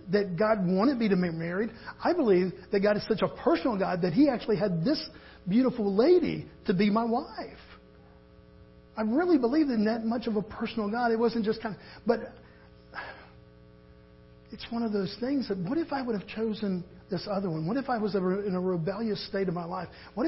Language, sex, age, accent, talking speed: English, male, 50-69, American, 205 wpm